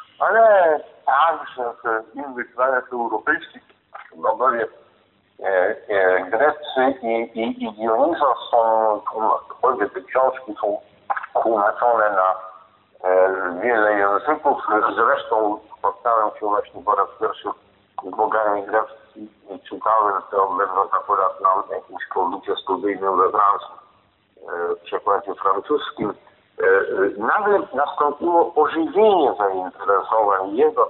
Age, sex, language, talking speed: 50-69, male, Polish, 95 wpm